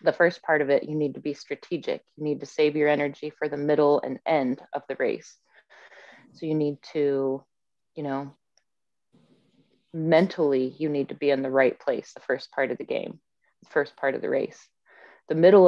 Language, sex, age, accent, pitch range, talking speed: English, female, 20-39, American, 135-155 Hz, 205 wpm